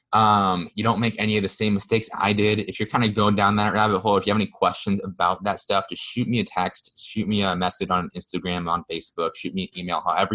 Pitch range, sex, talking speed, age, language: 90-115 Hz, male, 265 wpm, 20-39, English